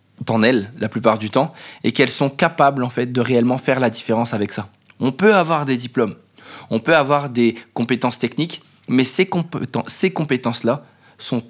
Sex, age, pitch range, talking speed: male, 20-39, 110-145 Hz, 175 wpm